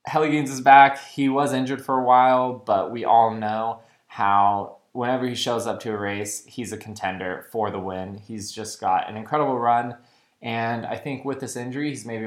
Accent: American